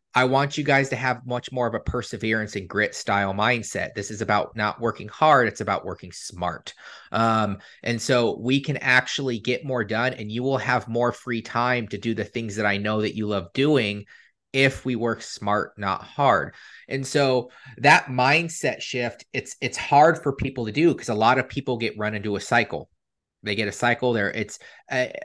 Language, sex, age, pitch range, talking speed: English, male, 30-49, 105-125 Hz, 205 wpm